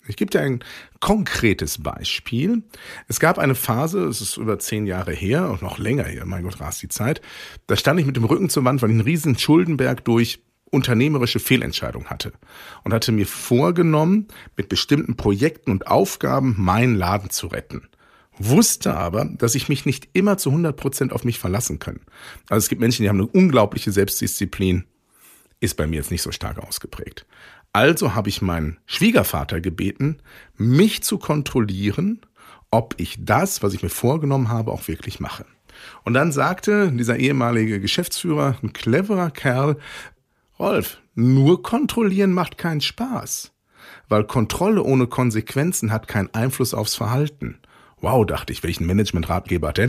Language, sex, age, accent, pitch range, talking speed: German, male, 50-69, German, 100-145 Hz, 165 wpm